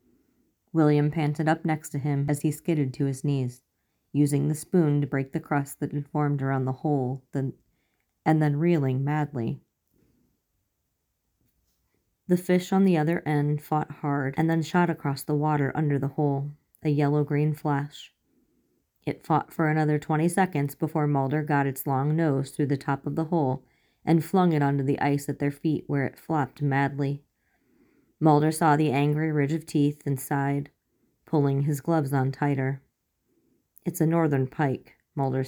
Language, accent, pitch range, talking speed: English, American, 140-155 Hz, 165 wpm